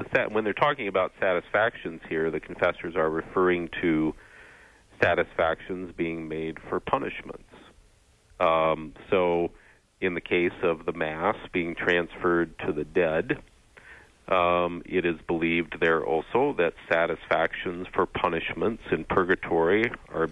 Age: 40-59